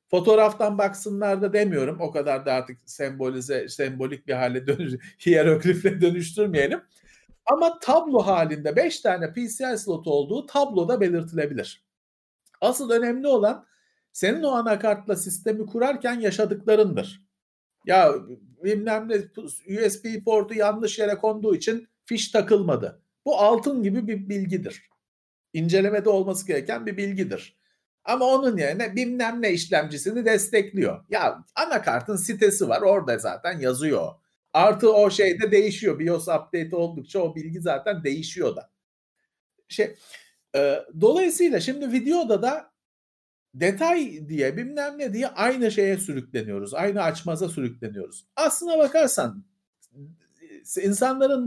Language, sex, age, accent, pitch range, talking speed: Turkish, male, 50-69, native, 170-230 Hz, 115 wpm